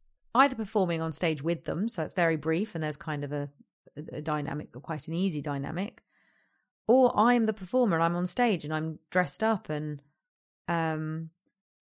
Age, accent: 30-49, British